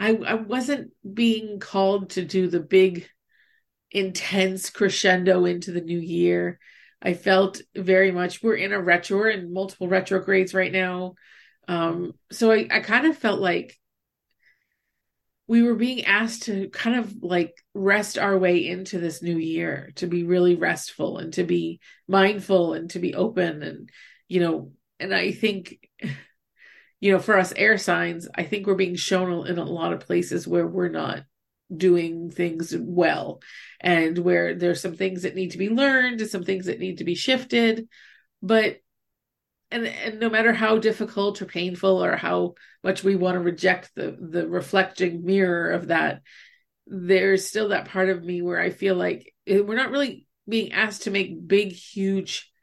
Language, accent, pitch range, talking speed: English, American, 175-210 Hz, 170 wpm